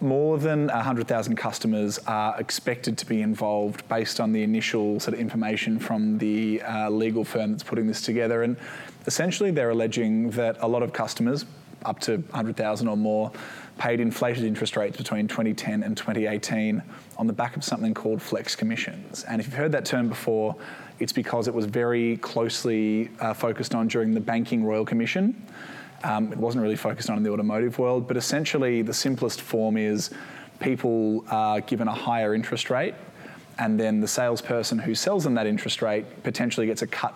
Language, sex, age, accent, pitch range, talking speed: English, male, 20-39, Australian, 110-120 Hz, 180 wpm